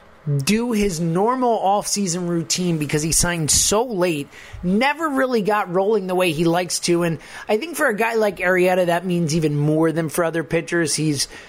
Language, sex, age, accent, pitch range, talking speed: English, male, 30-49, American, 160-210 Hz, 190 wpm